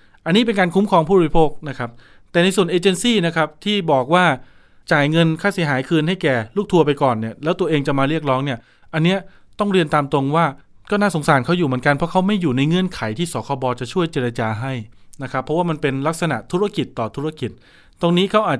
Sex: male